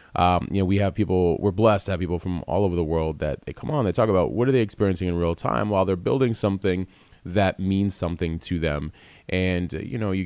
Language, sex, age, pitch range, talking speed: English, male, 30-49, 85-100 Hz, 255 wpm